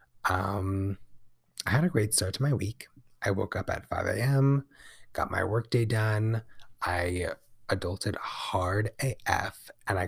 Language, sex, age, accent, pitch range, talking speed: English, male, 20-39, American, 90-120 Hz, 145 wpm